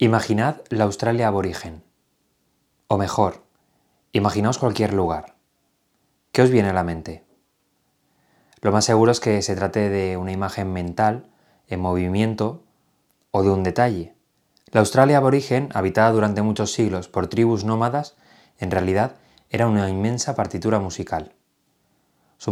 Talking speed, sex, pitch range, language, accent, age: 135 wpm, male, 95-120 Hz, Spanish, Spanish, 20-39